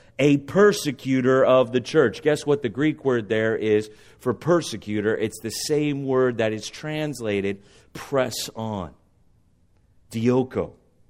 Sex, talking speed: male, 130 wpm